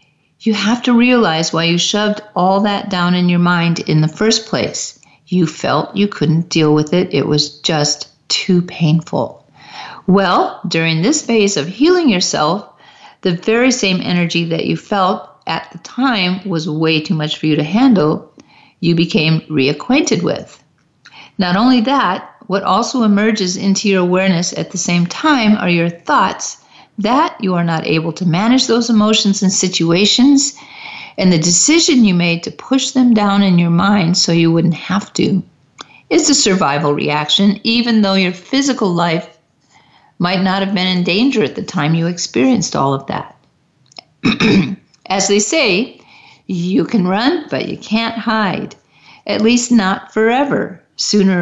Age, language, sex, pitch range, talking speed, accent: 50-69, English, female, 170-225 Hz, 165 wpm, American